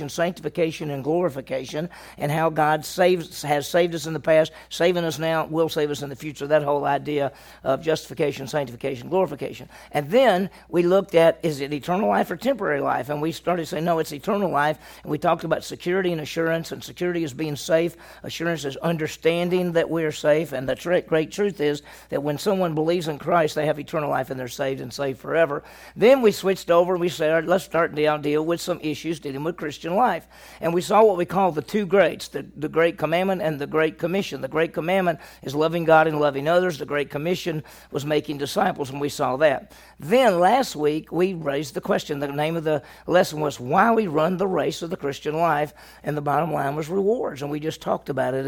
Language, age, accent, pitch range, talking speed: English, 50-69, American, 145-175 Hz, 215 wpm